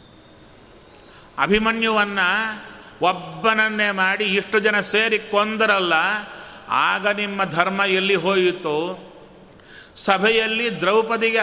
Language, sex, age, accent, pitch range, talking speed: Kannada, male, 30-49, native, 175-210 Hz, 75 wpm